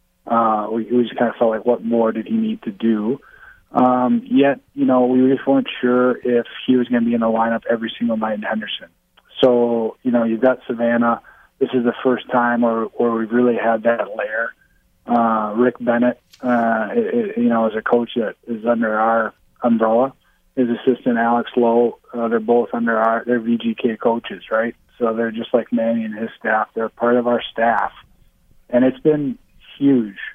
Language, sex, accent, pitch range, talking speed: English, male, American, 115-125 Hz, 195 wpm